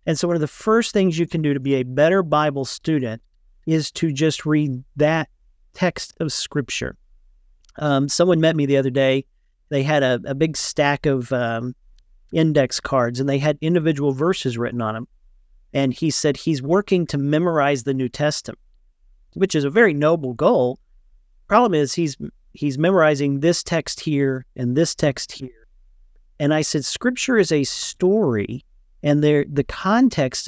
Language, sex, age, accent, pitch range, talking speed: English, male, 40-59, American, 130-165 Hz, 175 wpm